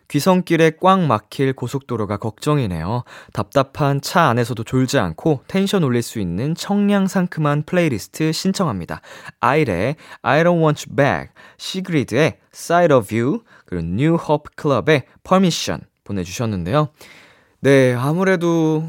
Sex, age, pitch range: male, 20-39, 105-165 Hz